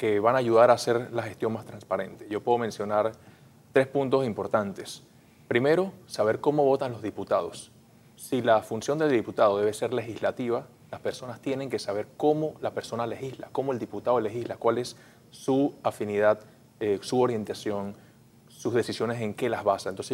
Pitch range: 110-125 Hz